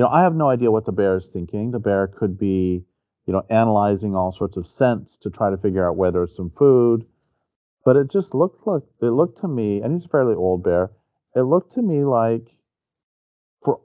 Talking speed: 225 wpm